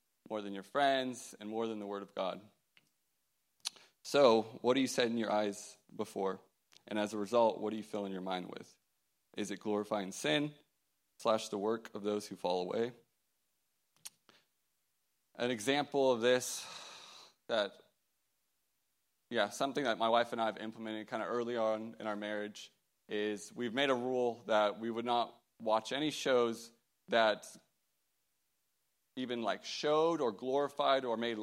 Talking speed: 160 wpm